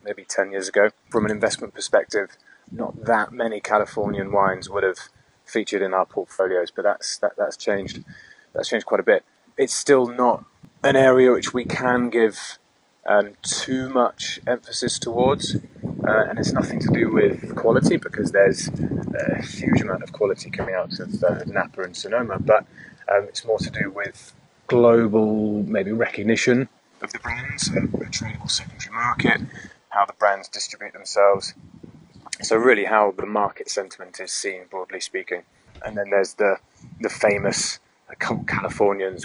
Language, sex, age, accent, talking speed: English, male, 20-39, British, 160 wpm